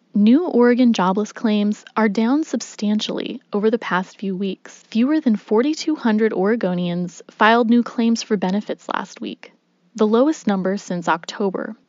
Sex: female